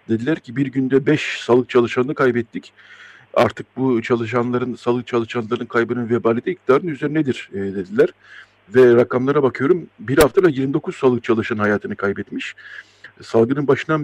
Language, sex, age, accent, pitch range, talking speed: Turkish, male, 60-79, native, 115-155 Hz, 135 wpm